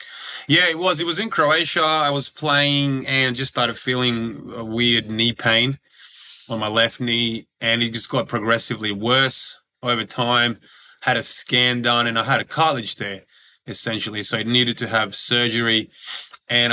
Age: 20-39